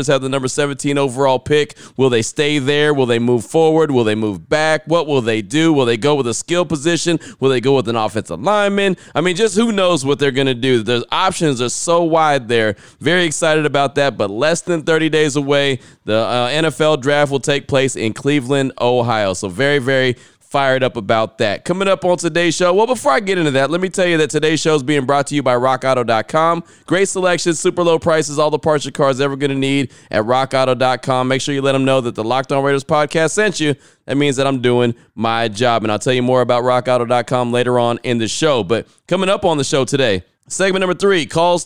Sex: male